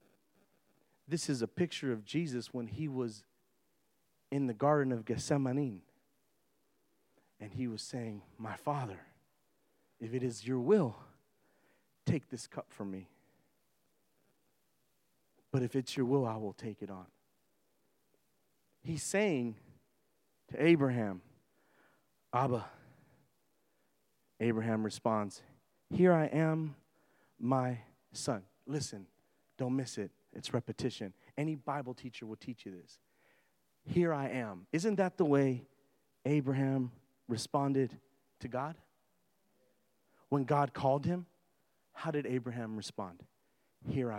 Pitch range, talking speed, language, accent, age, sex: 115-145 Hz, 115 wpm, English, American, 40-59, male